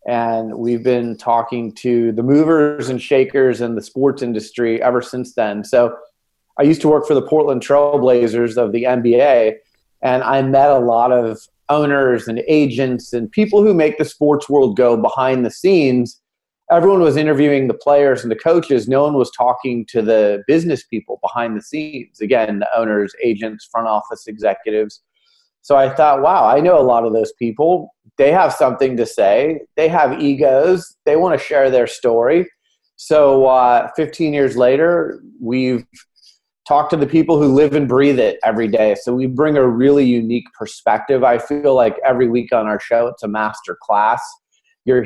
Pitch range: 115-145 Hz